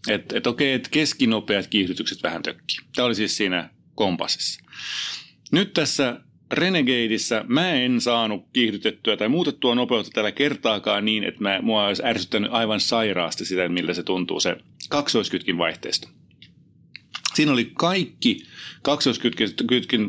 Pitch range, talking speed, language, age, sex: 100-125 Hz, 130 wpm, Finnish, 30-49, male